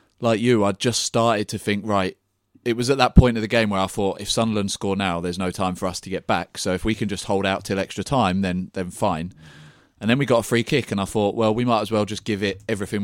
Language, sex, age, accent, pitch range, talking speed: English, male, 30-49, British, 95-115 Hz, 290 wpm